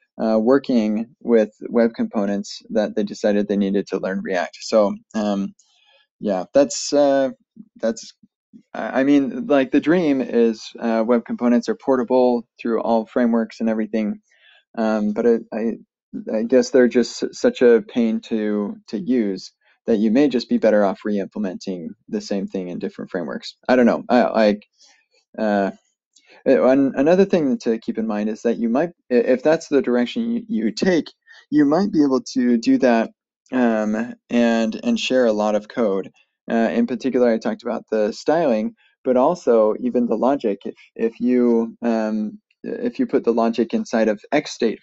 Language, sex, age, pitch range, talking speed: English, male, 20-39, 110-165 Hz, 170 wpm